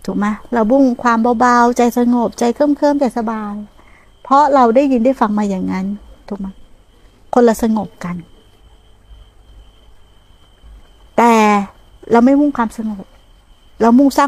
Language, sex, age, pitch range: Thai, female, 60-79, 190-245 Hz